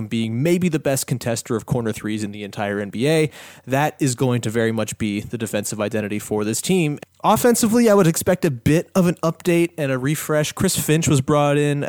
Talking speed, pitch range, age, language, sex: 210 wpm, 115-150 Hz, 30-49, English, male